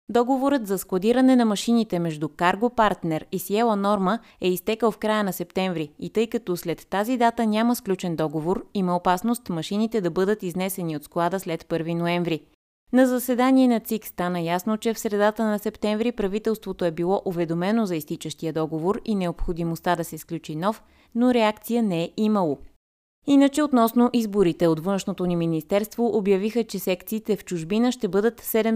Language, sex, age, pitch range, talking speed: Bulgarian, female, 20-39, 170-220 Hz, 165 wpm